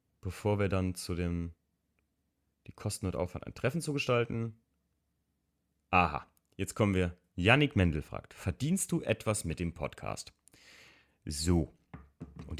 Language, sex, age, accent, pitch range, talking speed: German, male, 30-49, German, 85-95 Hz, 135 wpm